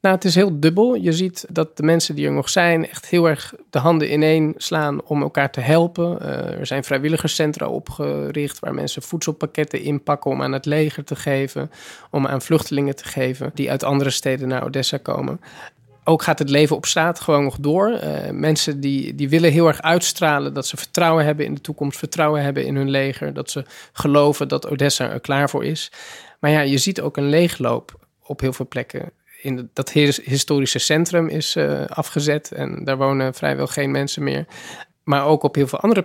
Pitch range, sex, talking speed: 135-160 Hz, male, 200 wpm